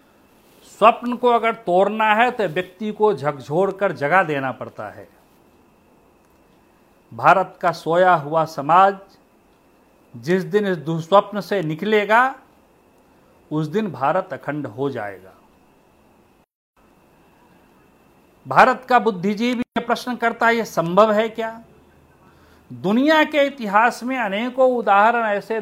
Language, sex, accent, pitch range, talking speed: Hindi, male, native, 175-230 Hz, 115 wpm